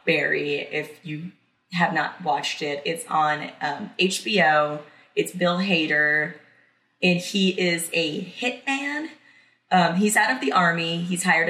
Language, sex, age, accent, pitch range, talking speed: English, female, 20-39, American, 155-200 Hz, 140 wpm